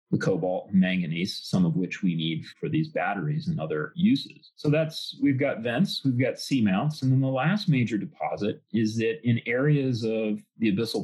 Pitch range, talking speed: 105-155 Hz, 190 wpm